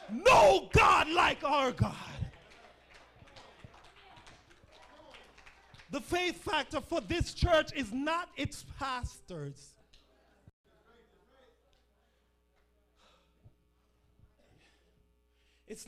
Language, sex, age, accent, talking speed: English, male, 30-49, American, 60 wpm